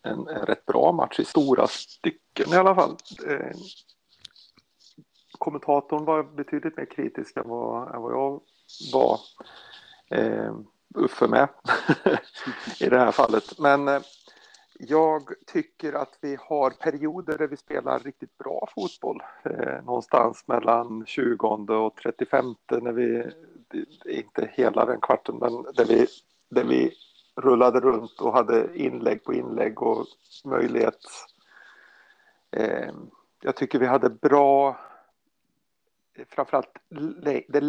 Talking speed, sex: 125 wpm, male